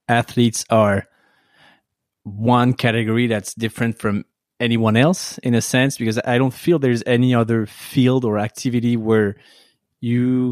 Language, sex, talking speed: English, male, 135 wpm